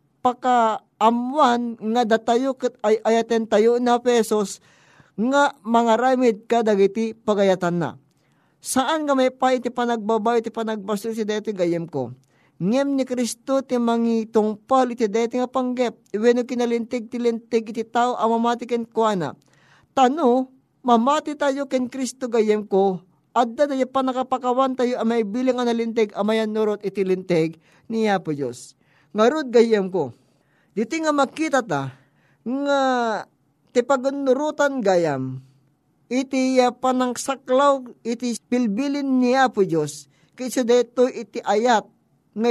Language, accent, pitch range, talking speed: Filipino, native, 195-250 Hz, 115 wpm